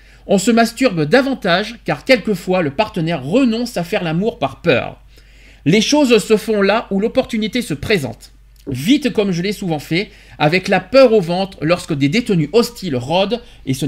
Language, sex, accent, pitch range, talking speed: French, male, French, 170-240 Hz, 175 wpm